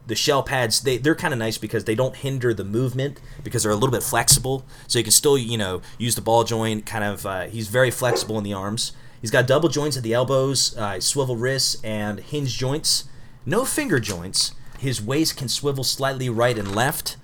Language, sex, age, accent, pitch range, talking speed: English, male, 30-49, American, 110-135 Hz, 215 wpm